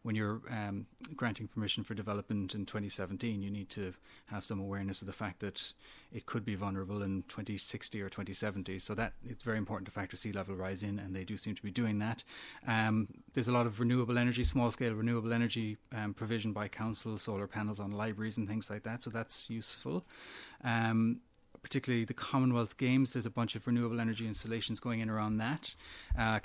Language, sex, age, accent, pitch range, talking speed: English, male, 30-49, Irish, 105-125 Hz, 205 wpm